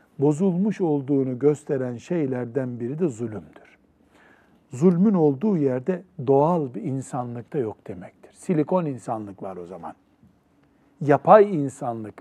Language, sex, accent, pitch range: Turkish, male, native, 135-185 Hz